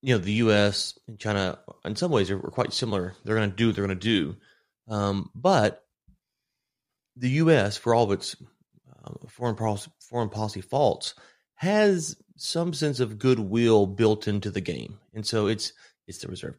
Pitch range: 100-115 Hz